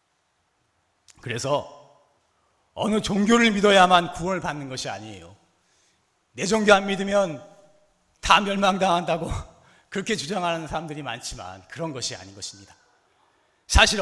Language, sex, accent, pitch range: Korean, male, native, 130-205 Hz